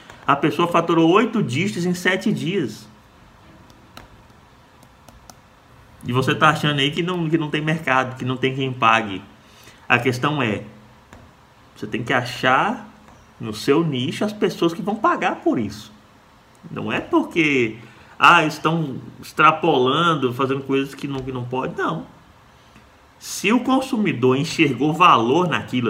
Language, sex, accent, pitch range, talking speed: Portuguese, male, Brazilian, 120-185 Hz, 135 wpm